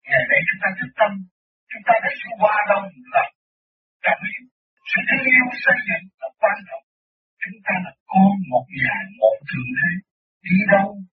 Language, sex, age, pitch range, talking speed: Vietnamese, male, 60-79, 185-275 Hz, 90 wpm